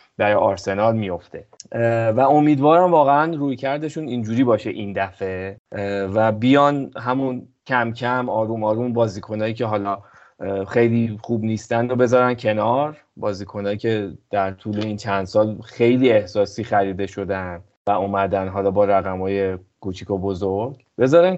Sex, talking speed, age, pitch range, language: male, 125 wpm, 30-49, 100-130 Hz, Persian